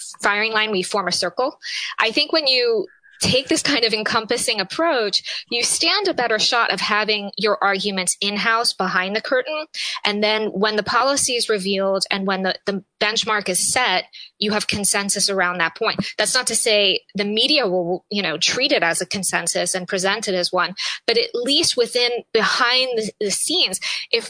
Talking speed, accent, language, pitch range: 190 wpm, American, English, 195-265 Hz